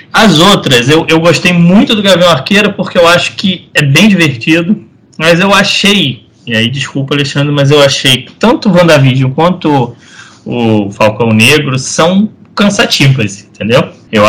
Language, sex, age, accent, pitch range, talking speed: Portuguese, male, 20-39, Brazilian, 125-185 Hz, 160 wpm